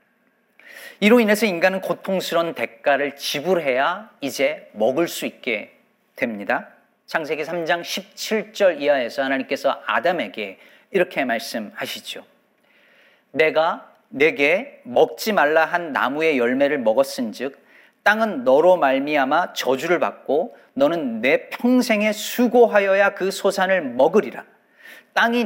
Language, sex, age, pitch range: Korean, male, 40-59, 170-230 Hz